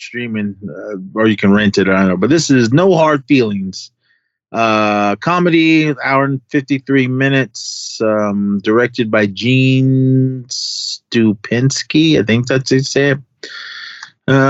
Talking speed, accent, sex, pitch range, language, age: 135 wpm, American, male, 110-145 Hz, English, 30-49